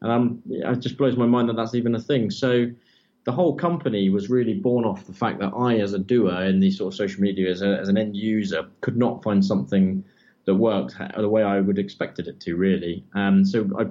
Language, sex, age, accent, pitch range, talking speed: English, male, 20-39, British, 95-110 Hz, 250 wpm